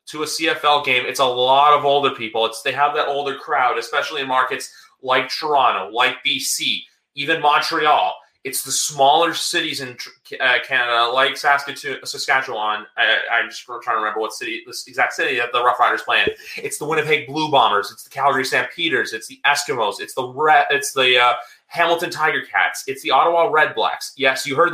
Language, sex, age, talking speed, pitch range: English, male, 30-49, 200 wpm, 140-235 Hz